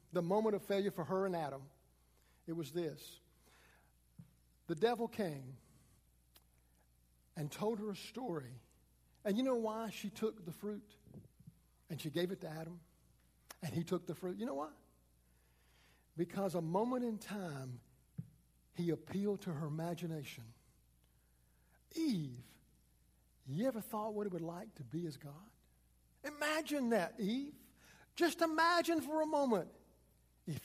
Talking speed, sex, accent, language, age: 140 wpm, male, American, English, 60-79